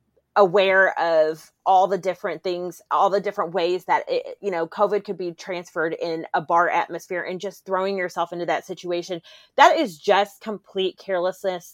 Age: 30-49